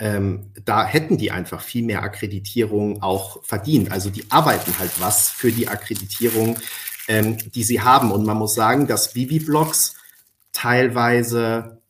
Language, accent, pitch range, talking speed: German, German, 110-135 Hz, 145 wpm